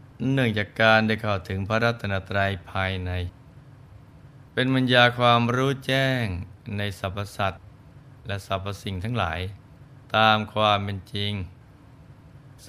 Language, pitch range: Thai, 95-125 Hz